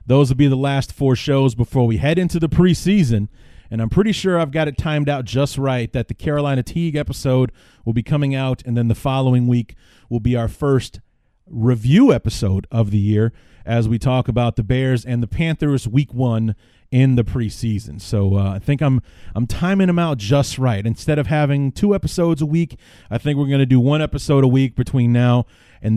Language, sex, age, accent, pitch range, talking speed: English, male, 30-49, American, 115-145 Hz, 215 wpm